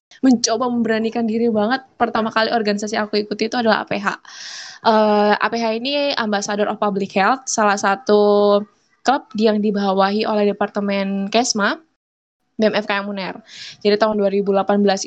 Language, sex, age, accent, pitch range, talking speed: Indonesian, female, 10-29, native, 205-235 Hz, 125 wpm